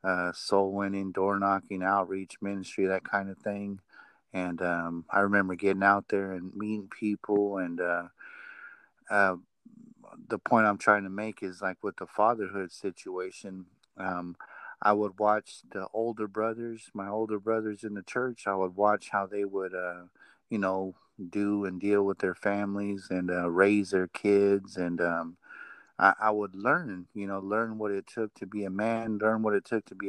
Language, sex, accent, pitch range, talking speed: English, male, American, 95-110 Hz, 180 wpm